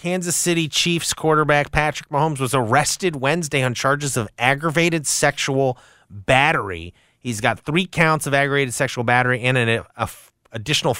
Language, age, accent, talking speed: English, 30-49, American, 140 wpm